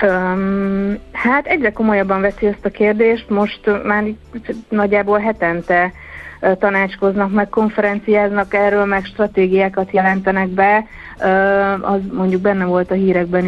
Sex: female